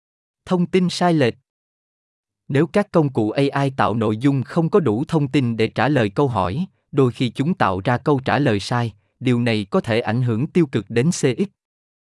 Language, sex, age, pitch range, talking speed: Vietnamese, male, 20-39, 110-160 Hz, 205 wpm